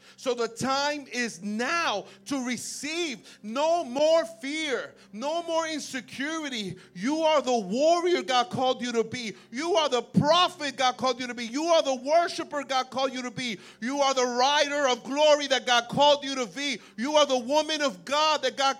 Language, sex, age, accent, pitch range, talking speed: English, male, 50-69, American, 240-300 Hz, 190 wpm